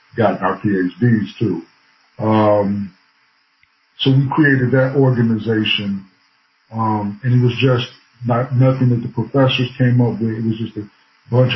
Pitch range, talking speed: 105-125 Hz, 145 wpm